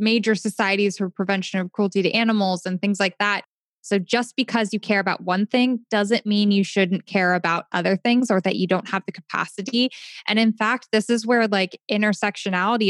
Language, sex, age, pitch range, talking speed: English, female, 10-29, 190-230 Hz, 200 wpm